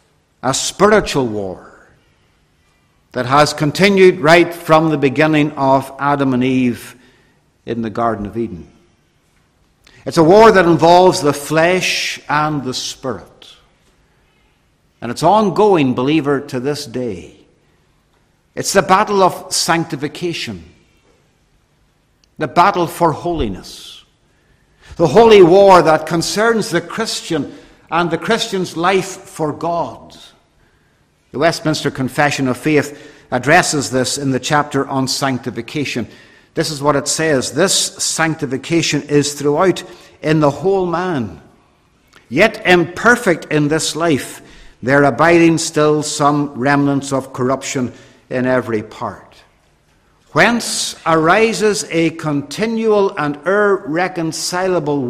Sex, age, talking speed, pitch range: male, 60-79, 115 wpm, 135-175 Hz